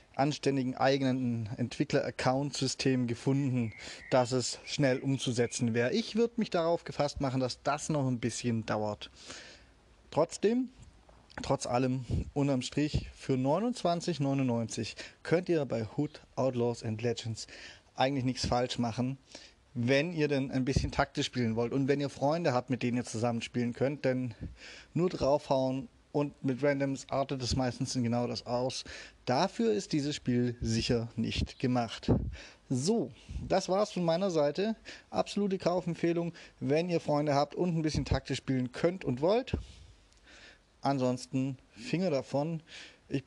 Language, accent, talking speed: German, German, 140 wpm